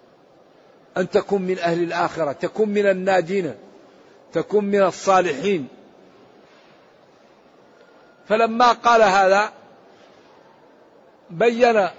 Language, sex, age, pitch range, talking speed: Arabic, male, 50-69, 180-210 Hz, 75 wpm